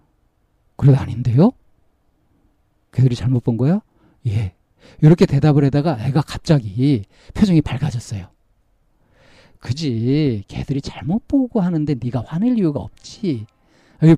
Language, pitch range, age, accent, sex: Korean, 105-145 Hz, 40-59, native, male